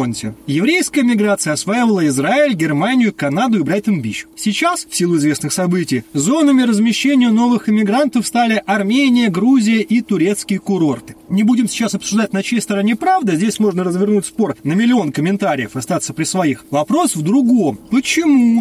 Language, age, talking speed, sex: Russian, 30-49, 145 wpm, male